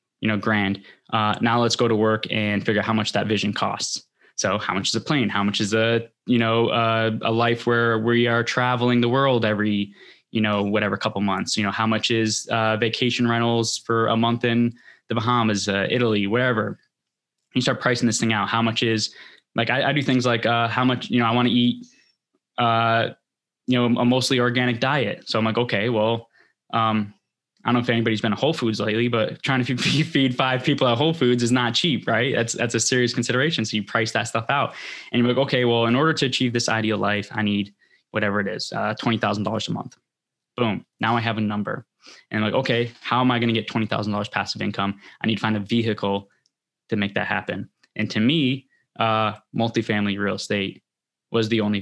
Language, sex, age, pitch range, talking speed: English, male, 10-29, 110-120 Hz, 220 wpm